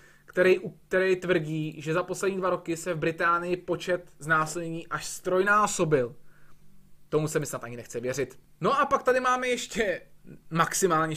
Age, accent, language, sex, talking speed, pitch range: 20-39, native, Czech, male, 155 wpm, 155-200 Hz